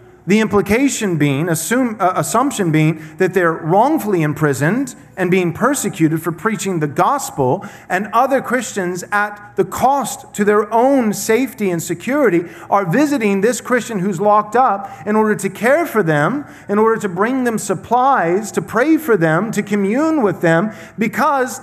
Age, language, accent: 40-59, English, American